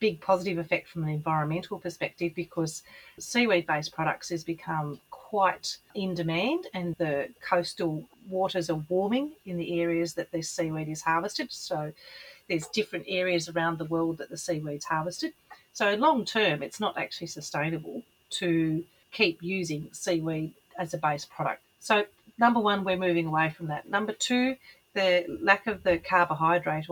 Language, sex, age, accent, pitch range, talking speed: English, female, 40-59, Australian, 160-190 Hz, 155 wpm